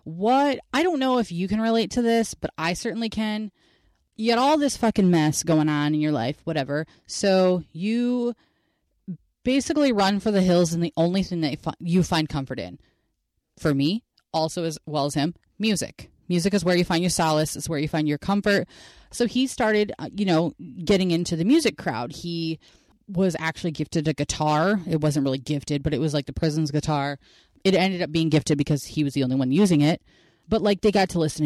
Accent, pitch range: American, 155-210 Hz